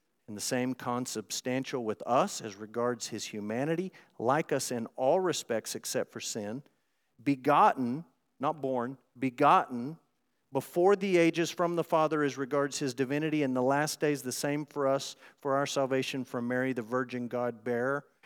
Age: 50-69